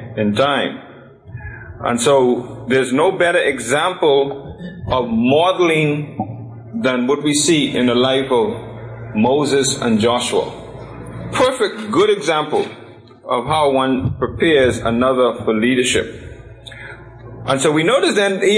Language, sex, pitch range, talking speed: English, male, 120-160 Hz, 120 wpm